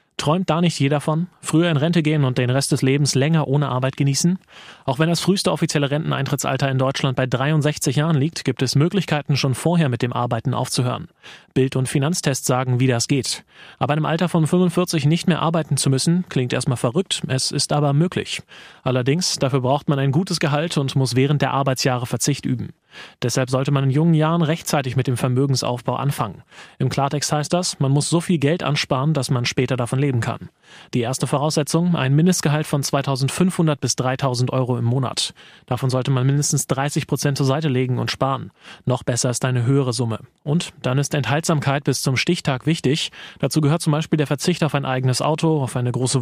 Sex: male